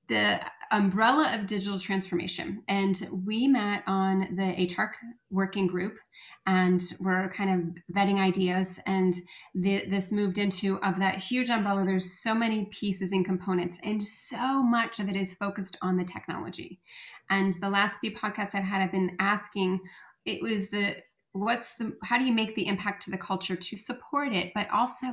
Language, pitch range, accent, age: English, 190-220 Hz, American, 30-49